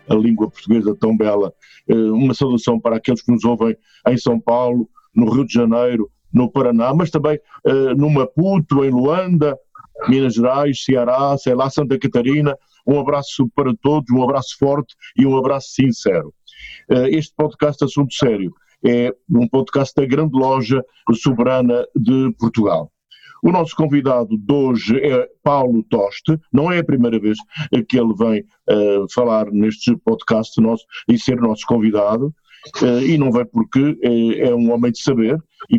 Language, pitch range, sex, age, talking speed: Portuguese, 115-140 Hz, male, 50-69, 160 wpm